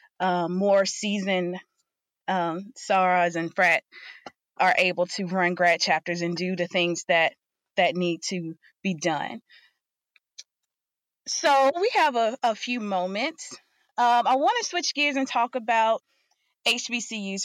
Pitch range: 185-240 Hz